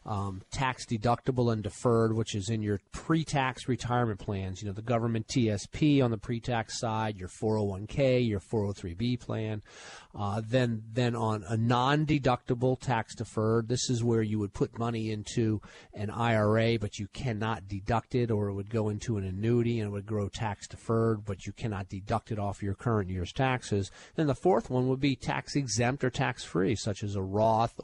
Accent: American